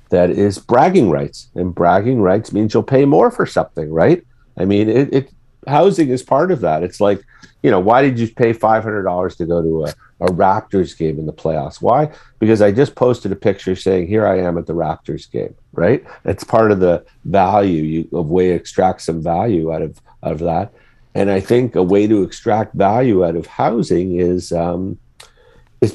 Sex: male